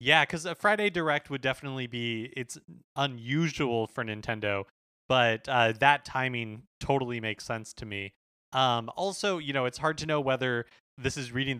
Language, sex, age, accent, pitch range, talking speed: English, male, 20-39, American, 115-140 Hz, 165 wpm